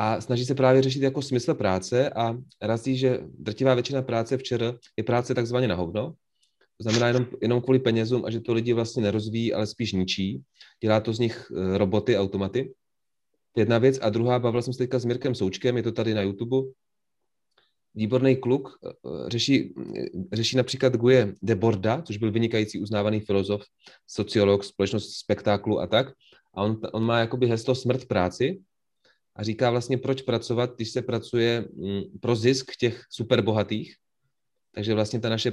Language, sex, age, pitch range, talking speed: English, male, 30-49, 105-125 Hz, 165 wpm